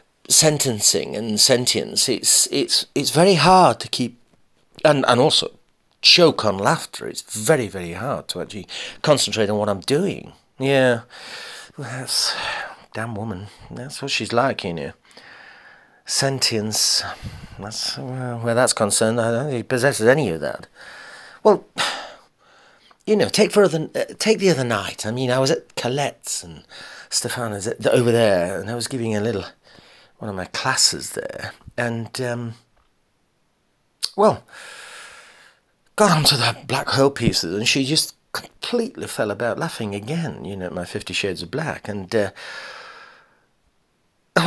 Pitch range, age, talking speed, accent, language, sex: 110-150 Hz, 40-59, 150 wpm, British, English, male